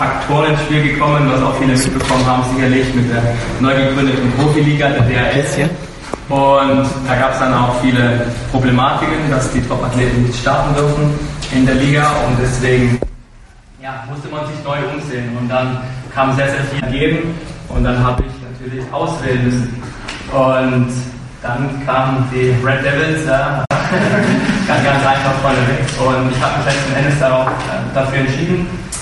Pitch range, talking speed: 125-140 Hz, 160 wpm